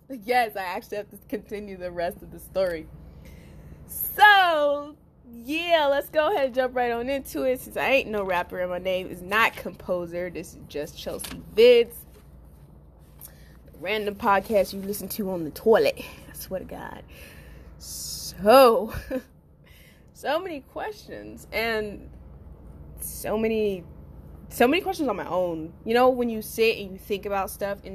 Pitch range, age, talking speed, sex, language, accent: 165-235 Hz, 20-39, 160 wpm, female, English, American